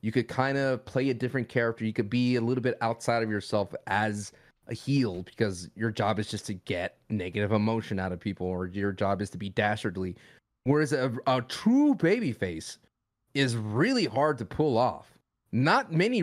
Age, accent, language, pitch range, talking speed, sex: 30-49, American, English, 110-150 Hz, 190 wpm, male